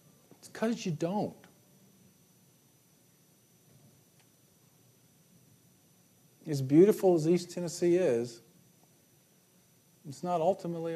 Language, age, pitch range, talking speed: English, 50-69, 145-180 Hz, 70 wpm